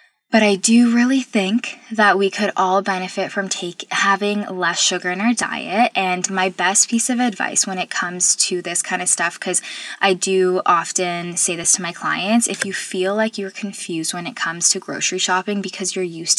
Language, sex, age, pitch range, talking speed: English, female, 10-29, 180-215 Hz, 200 wpm